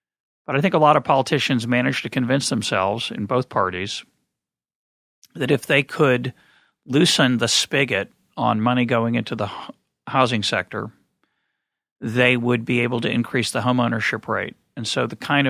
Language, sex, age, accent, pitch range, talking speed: English, male, 40-59, American, 110-130 Hz, 160 wpm